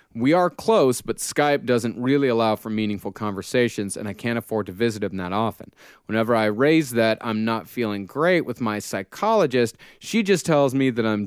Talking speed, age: 195 wpm, 30-49